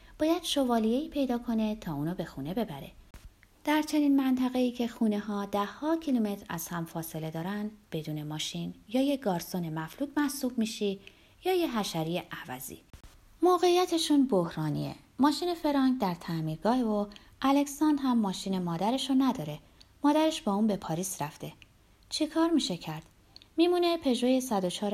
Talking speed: 140 wpm